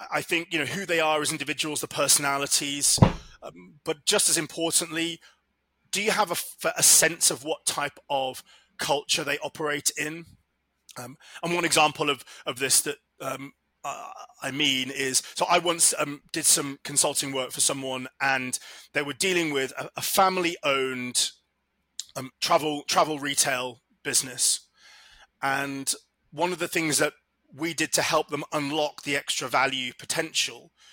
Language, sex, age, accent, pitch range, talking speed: English, male, 30-49, British, 135-160 Hz, 160 wpm